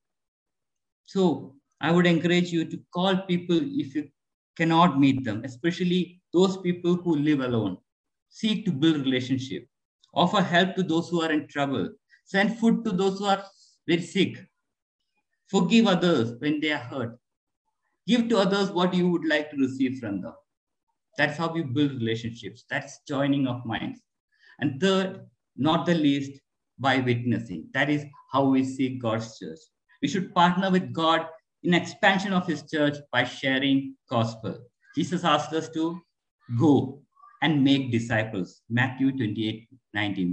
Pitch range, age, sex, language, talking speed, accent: 130-175 Hz, 50-69, male, English, 155 wpm, Indian